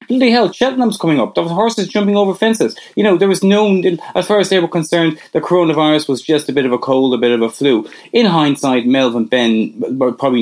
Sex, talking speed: male, 230 wpm